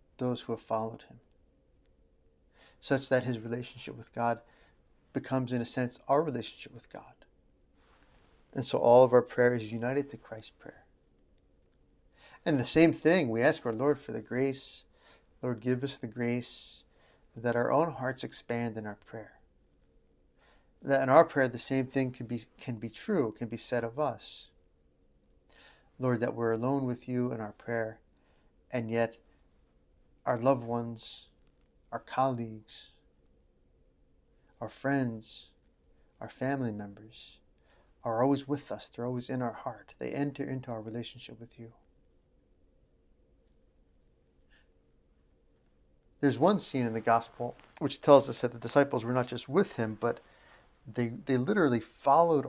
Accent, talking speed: American, 150 wpm